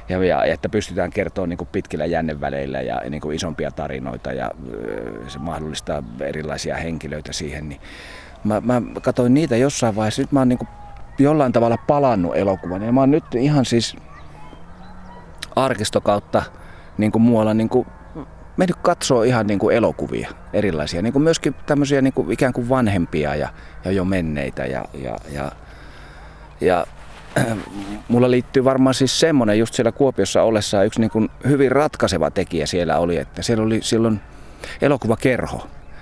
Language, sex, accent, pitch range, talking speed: Finnish, male, native, 85-125 Hz, 150 wpm